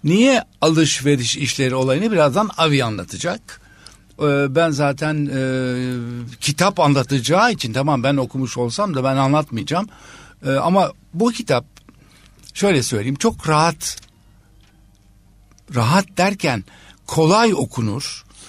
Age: 60-79